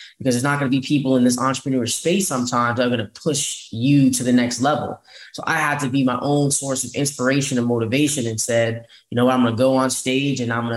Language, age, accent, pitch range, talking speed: English, 10-29, American, 125-145 Hz, 260 wpm